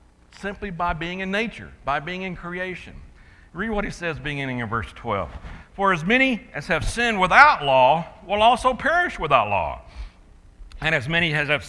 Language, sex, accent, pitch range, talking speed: English, male, American, 150-225 Hz, 180 wpm